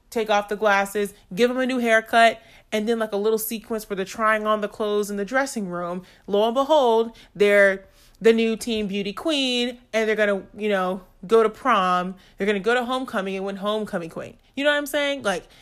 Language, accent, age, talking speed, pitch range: English, American, 30-49, 220 wpm, 195-255 Hz